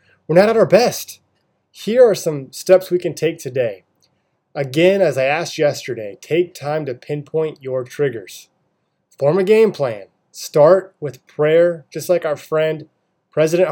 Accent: American